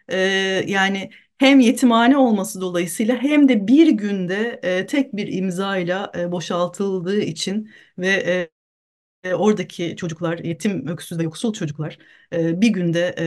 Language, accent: Turkish, native